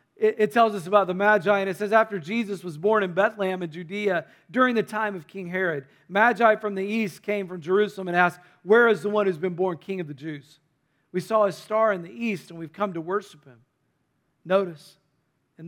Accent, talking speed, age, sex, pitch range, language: American, 220 wpm, 40-59, male, 175-225 Hz, English